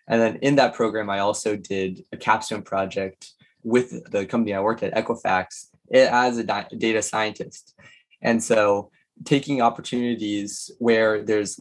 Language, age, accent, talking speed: English, 20-39, American, 145 wpm